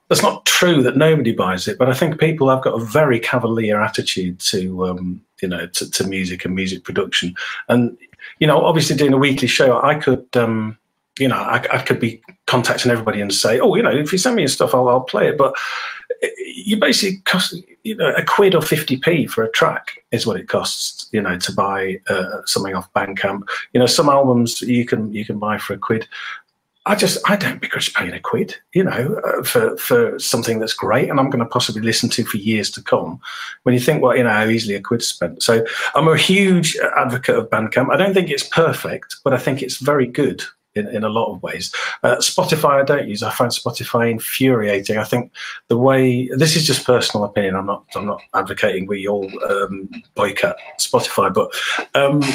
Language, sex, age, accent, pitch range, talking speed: English, male, 40-59, British, 110-155 Hz, 220 wpm